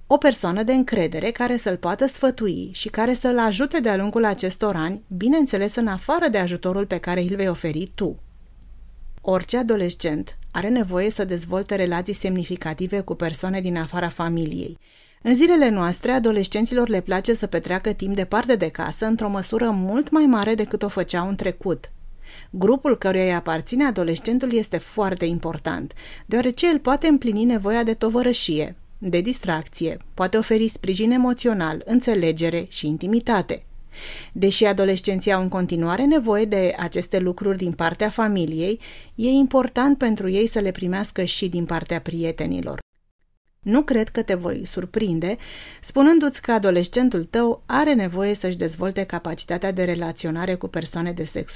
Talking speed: 150 wpm